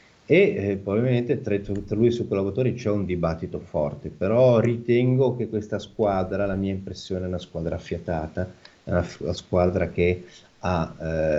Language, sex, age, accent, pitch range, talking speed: Italian, male, 40-59, native, 85-105 Hz, 170 wpm